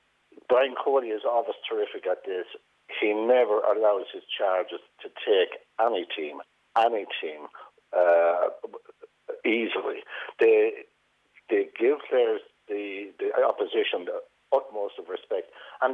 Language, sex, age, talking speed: English, male, 60-79, 120 wpm